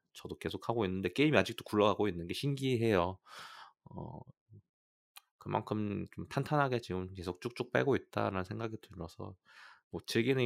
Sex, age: male, 20-39